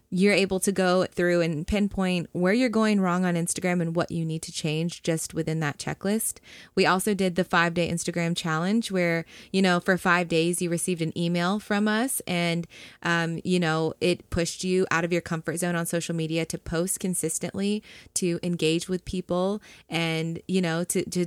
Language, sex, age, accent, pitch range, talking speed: English, female, 20-39, American, 175-205 Hz, 200 wpm